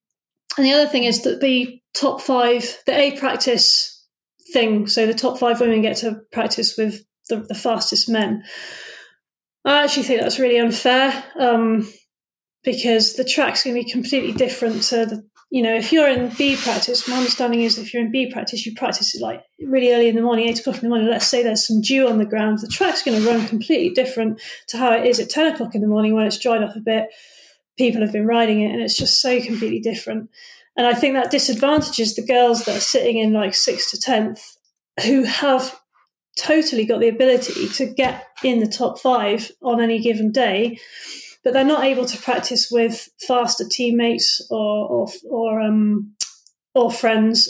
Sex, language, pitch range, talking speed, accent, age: female, English, 225-260 Hz, 200 wpm, British, 30-49